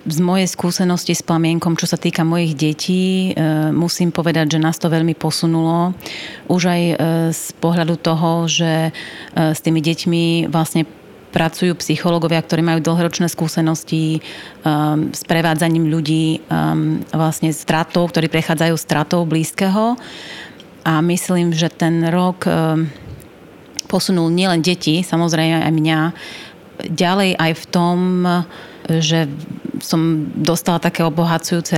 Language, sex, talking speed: Slovak, female, 120 wpm